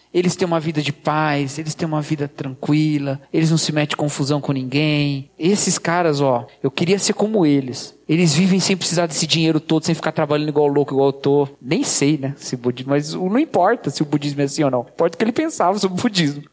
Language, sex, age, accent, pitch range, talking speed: Portuguese, male, 40-59, Brazilian, 145-225 Hz, 240 wpm